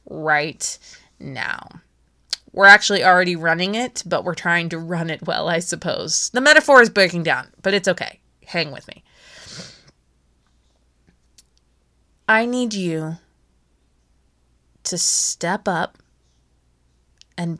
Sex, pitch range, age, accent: female, 155-220 Hz, 20-39, American